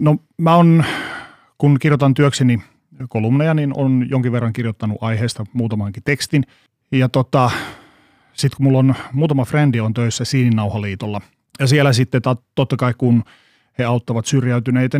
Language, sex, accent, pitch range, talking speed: Finnish, male, native, 115-135 Hz, 145 wpm